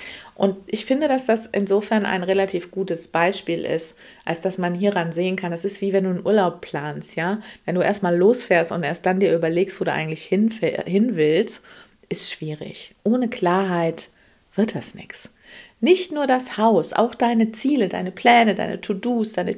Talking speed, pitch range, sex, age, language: 180 wpm, 185-245 Hz, female, 50-69, German